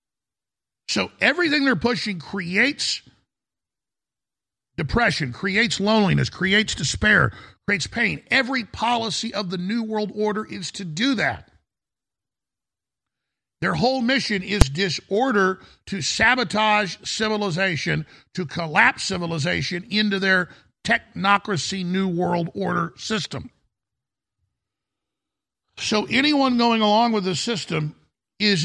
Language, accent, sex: English, American, male